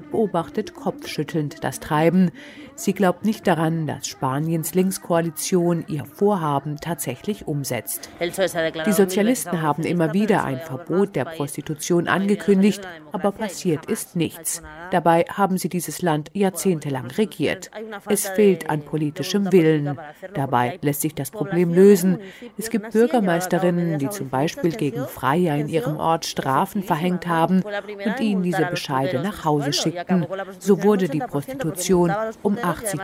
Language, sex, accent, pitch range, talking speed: German, female, German, 155-195 Hz, 135 wpm